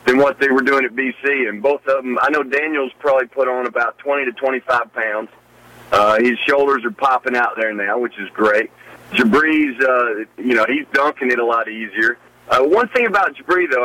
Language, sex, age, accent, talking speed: English, male, 40-59, American, 210 wpm